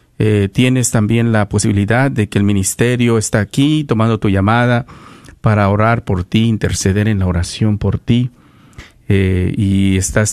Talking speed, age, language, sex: 155 wpm, 50-69, Spanish, male